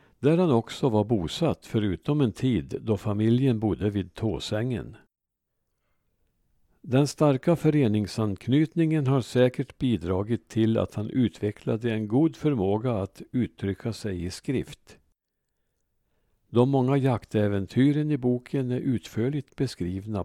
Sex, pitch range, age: male, 100-130 Hz, 60-79